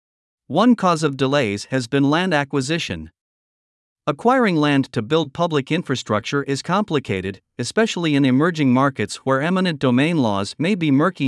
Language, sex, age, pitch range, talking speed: Vietnamese, male, 50-69, 130-165 Hz, 145 wpm